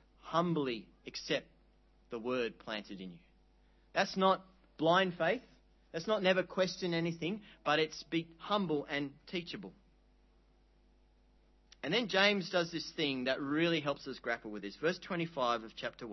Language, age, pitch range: English, 40-59, 135-185 Hz